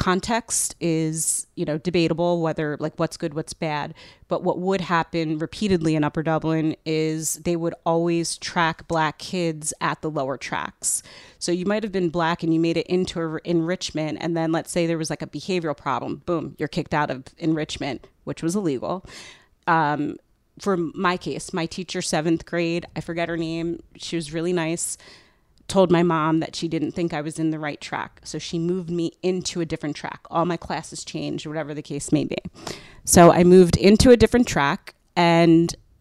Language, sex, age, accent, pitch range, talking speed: English, female, 30-49, American, 155-175 Hz, 195 wpm